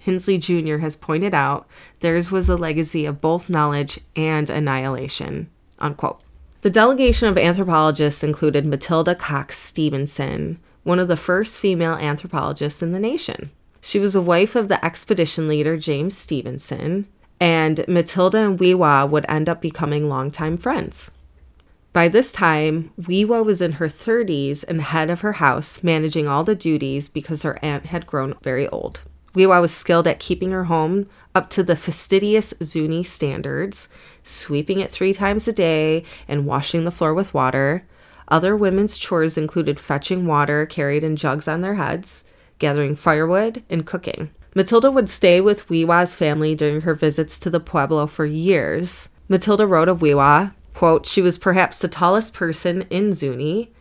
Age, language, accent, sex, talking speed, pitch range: 30-49, English, American, female, 160 wpm, 150-185 Hz